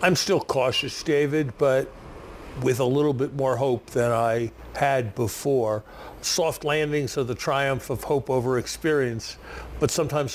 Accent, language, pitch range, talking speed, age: American, English, 120-145 Hz, 150 wpm, 50-69